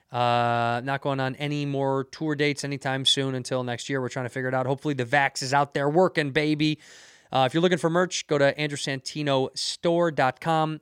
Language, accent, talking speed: English, American, 200 wpm